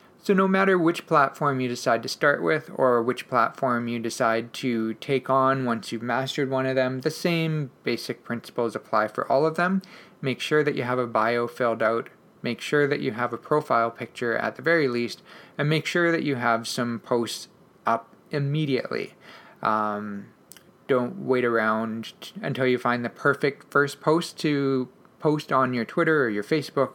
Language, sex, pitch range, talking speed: English, male, 120-155 Hz, 185 wpm